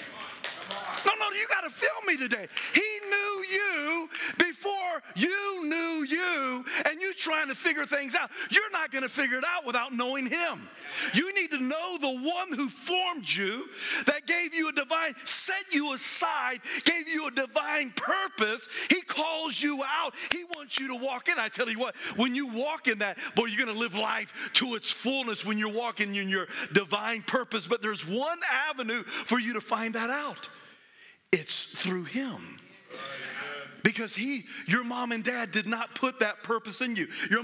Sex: male